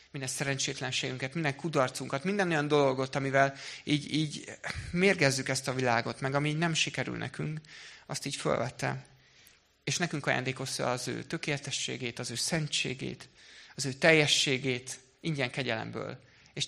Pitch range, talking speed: 125-160 Hz, 135 wpm